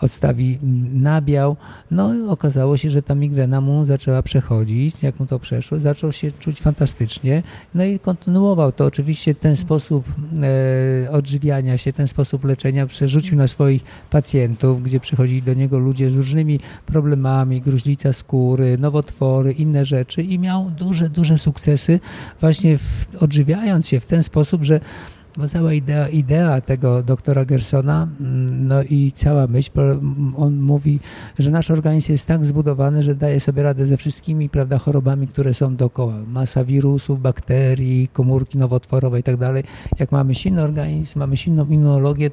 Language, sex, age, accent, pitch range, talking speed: Polish, male, 50-69, native, 130-150 Hz, 150 wpm